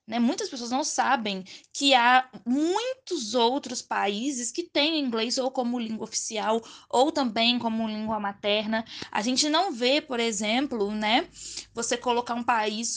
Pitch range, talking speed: 220-275 Hz, 150 wpm